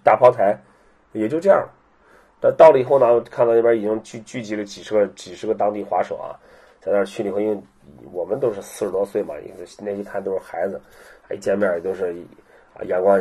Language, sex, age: Chinese, male, 30-49